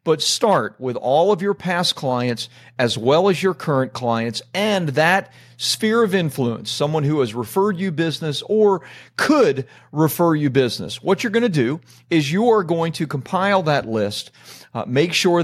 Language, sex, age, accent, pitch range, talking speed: English, male, 40-59, American, 125-170 Hz, 180 wpm